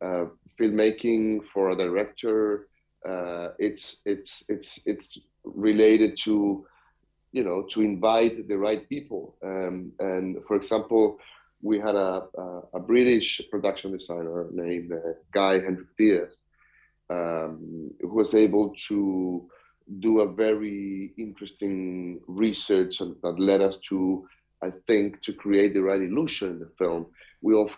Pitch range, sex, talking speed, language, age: 95-110 Hz, male, 130 wpm, English, 30-49